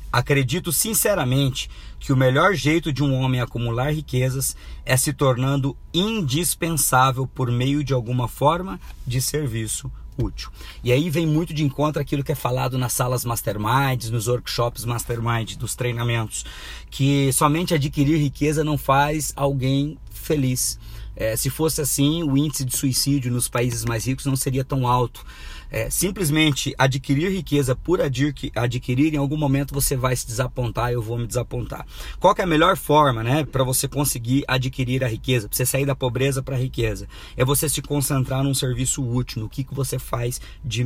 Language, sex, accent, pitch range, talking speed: Portuguese, male, Brazilian, 125-145 Hz, 170 wpm